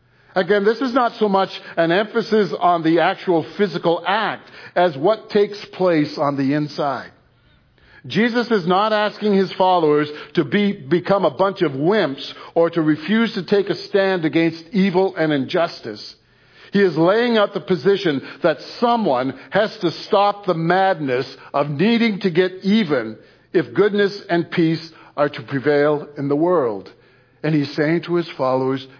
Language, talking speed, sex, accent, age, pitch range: English, 160 wpm, male, American, 60-79, 150-195 Hz